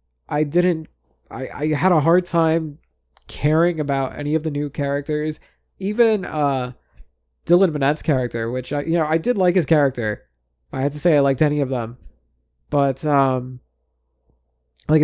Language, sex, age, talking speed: English, male, 20-39, 165 wpm